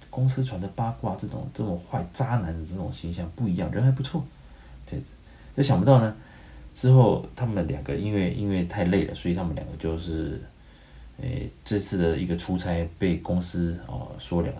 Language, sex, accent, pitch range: Chinese, male, native, 80-95 Hz